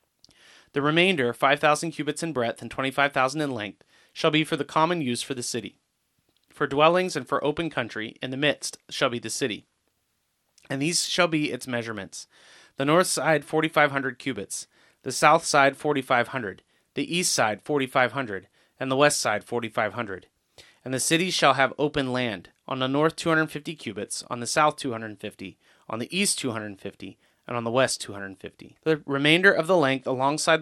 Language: English